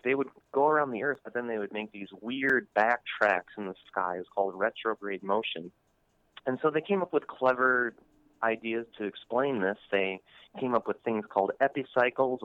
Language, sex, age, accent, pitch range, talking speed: English, male, 30-49, American, 100-125 Hz, 195 wpm